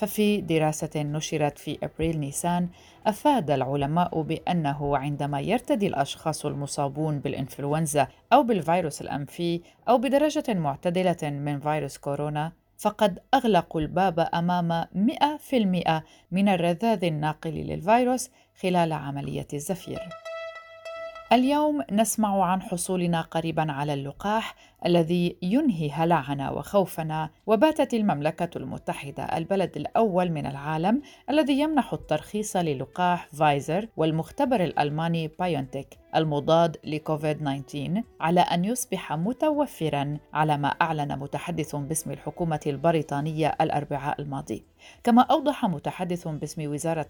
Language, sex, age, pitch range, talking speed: Arabic, female, 40-59, 150-195 Hz, 100 wpm